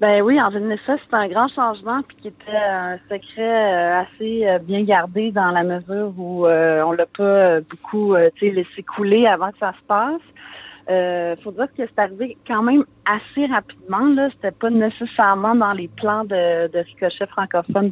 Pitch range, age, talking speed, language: 170-205 Hz, 40-59, 185 wpm, French